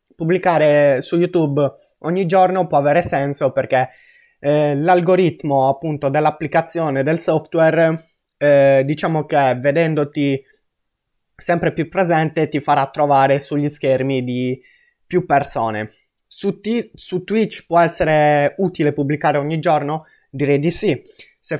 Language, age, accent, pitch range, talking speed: Italian, 20-39, native, 140-170 Hz, 120 wpm